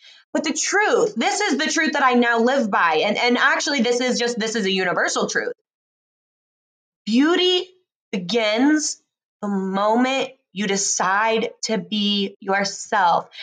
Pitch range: 215-275 Hz